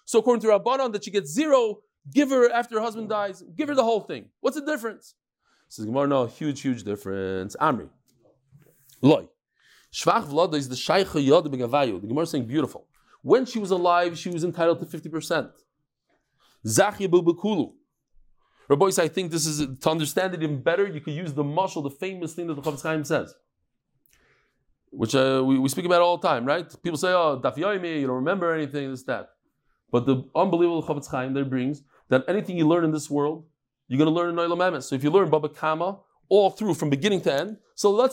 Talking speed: 200 wpm